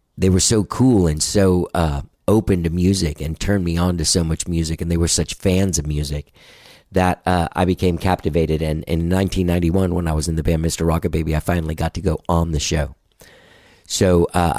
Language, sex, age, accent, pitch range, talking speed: English, male, 50-69, American, 85-95 Hz, 215 wpm